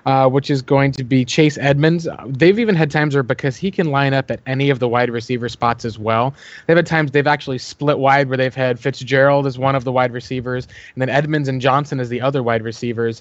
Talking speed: 250 wpm